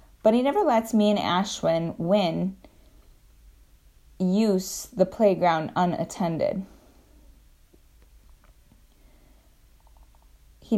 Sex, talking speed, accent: female, 70 wpm, American